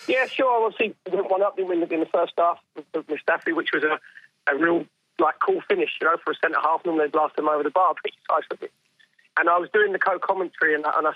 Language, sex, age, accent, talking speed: English, male, 30-49, British, 235 wpm